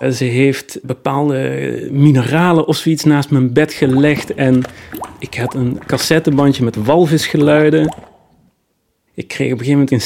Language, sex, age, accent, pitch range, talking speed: Dutch, male, 40-59, Dutch, 120-150 Hz, 145 wpm